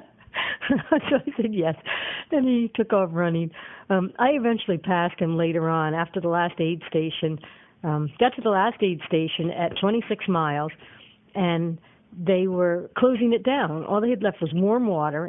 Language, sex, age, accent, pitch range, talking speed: English, female, 60-79, American, 165-215 Hz, 175 wpm